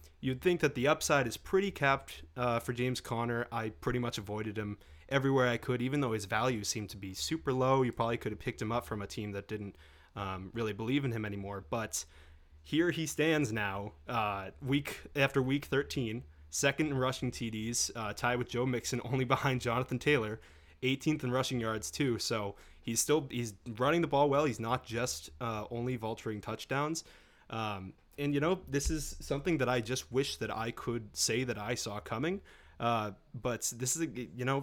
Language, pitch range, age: English, 105-135 Hz, 20-39